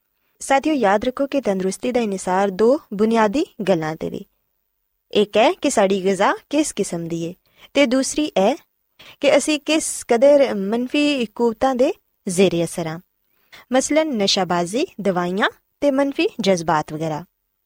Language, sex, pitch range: Punjabi, female, 195-280 Hz